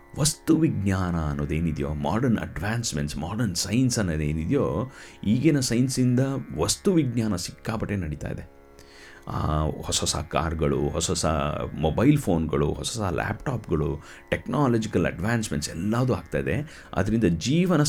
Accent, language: native, Kannada